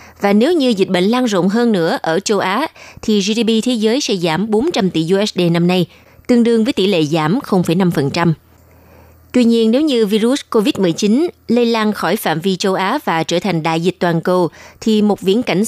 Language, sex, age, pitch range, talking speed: Vietnamese, female, 20-39, 180-235 Hz, 205 wpm